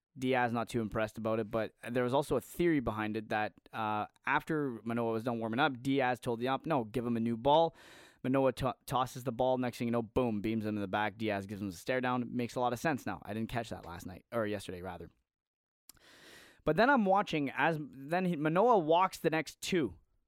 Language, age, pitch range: English, 20-39, 125-165 Hz